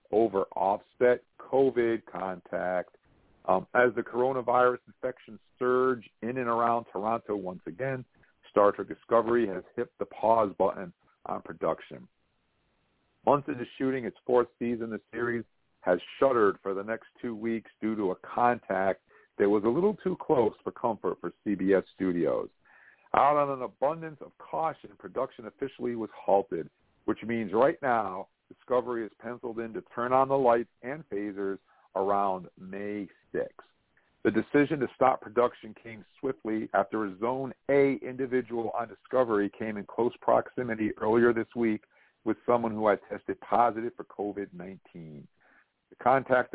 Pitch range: 105-125 Hz